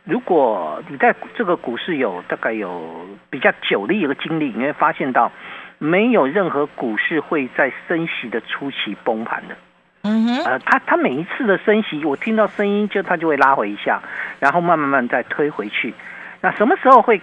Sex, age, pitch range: male, 50-69, 160-225 Hz